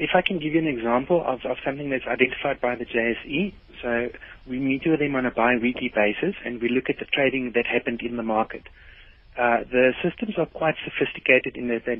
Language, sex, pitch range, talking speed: English, male, 115-135 Hz, 225 wpm